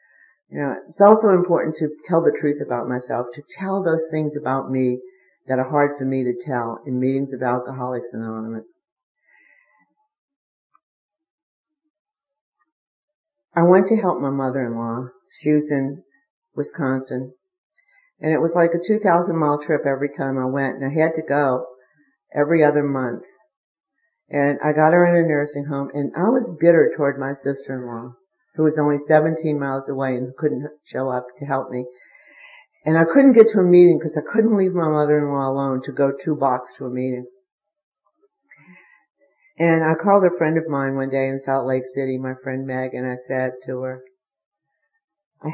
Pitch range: 130-185 Hz